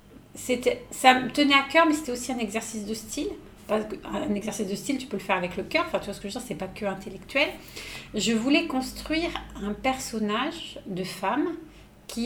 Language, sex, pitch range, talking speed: French, female, 200-255 Hz, 225 wpm